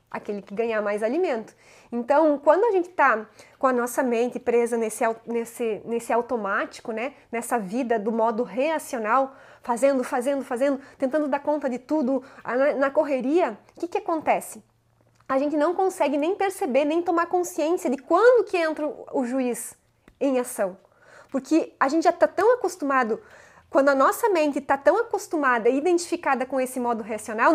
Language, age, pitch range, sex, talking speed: Portuguese, 20-39, 240-310 Hz, female, 165 wpm